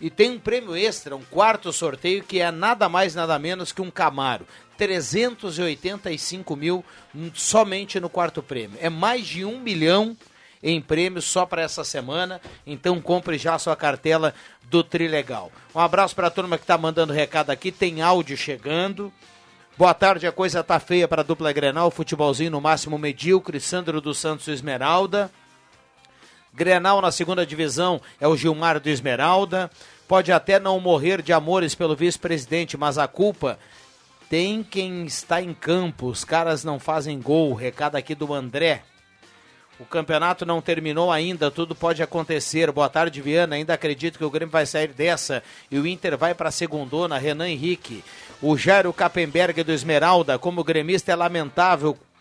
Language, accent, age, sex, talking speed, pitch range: Portuguese, Brazilian, 60-79, male, 165 wpm, 155-180 Hz